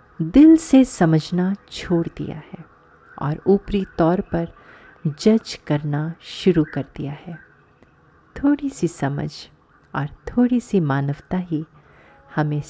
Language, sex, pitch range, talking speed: Hindi, female, 150-195 Hz, 120 wpm